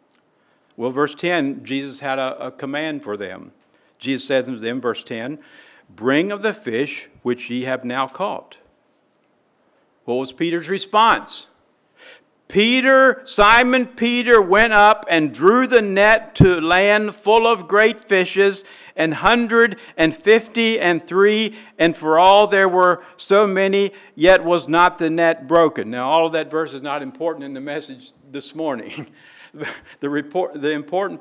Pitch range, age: 135-205 Hz, 60-79